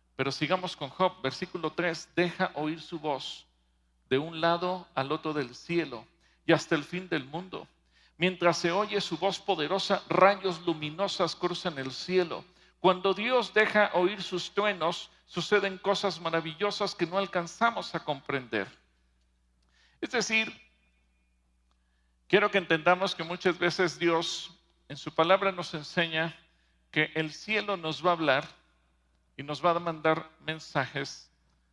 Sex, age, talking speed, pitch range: male, 50-69, 140 wpm, 125-185 Hz